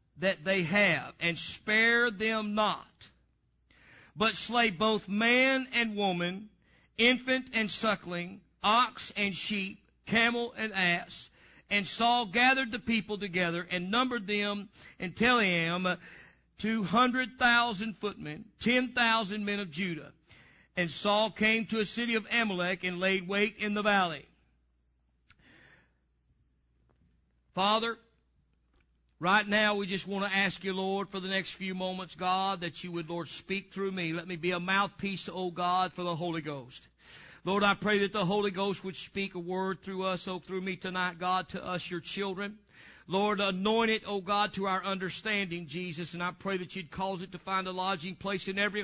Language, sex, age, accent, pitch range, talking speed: English, male, 50-69, American, 180-210 Hz, 160 wpm